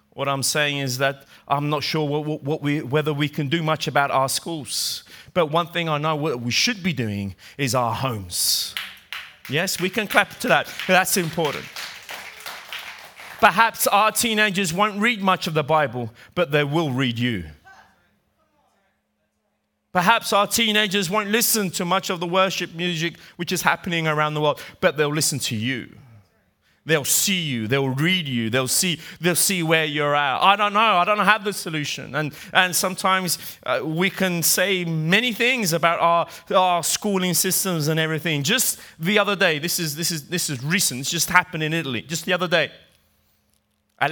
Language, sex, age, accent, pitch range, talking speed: Italian, male, 30-49, British, 145-185 Hz, 185 wpm